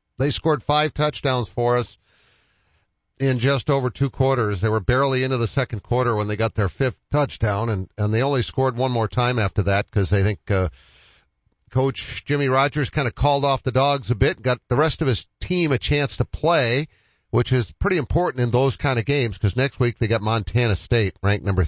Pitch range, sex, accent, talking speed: 95-130 Hz, male, American, 215 wpm